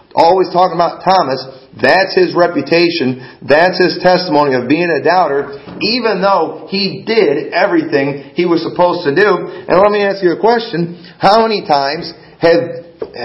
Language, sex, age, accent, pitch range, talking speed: English, male, 40-59, American, 135-180 Hz, 160 wpm